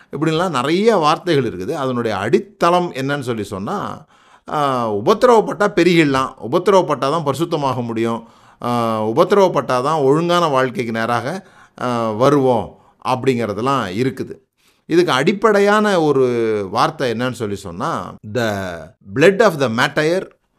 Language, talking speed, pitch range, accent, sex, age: Tamil, 100 wpm, 125-175 Hz, native, male, 30-49